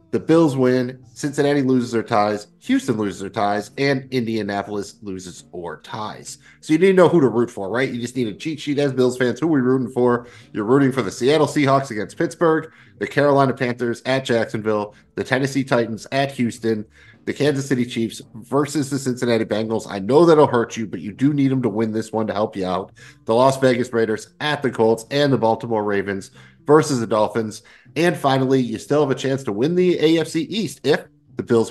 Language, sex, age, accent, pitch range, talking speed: English, male, 30-49, American, 110-145 Hz, 215 wpm